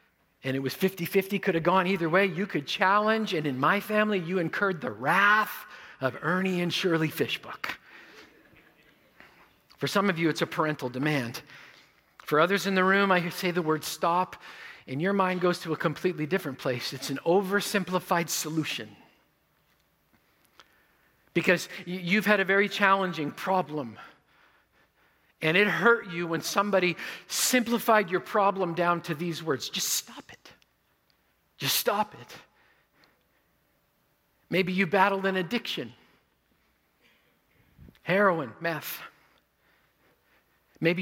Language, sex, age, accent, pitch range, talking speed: English, male, 50-69, American, 155-195 Hz, 130 wpm